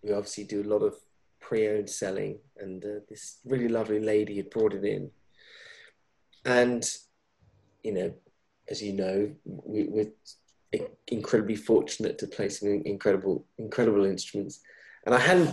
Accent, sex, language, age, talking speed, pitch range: British, male, English, 30-49, 145 wpm, 120-155 Hz